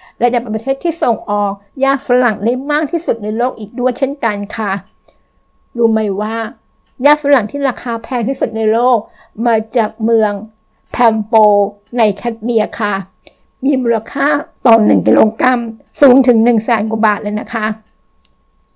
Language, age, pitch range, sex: Thai, 60-79, 210-260 Hz, female